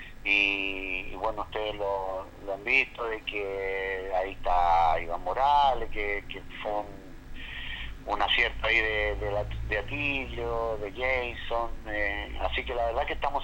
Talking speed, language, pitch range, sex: 145 wpm, Spanish, 100-125 Hz, male